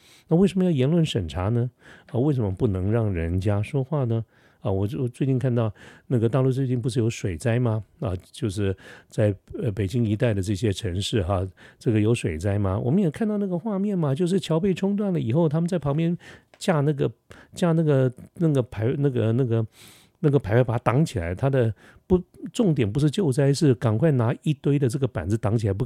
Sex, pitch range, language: male, 105-145 Hz, Chinese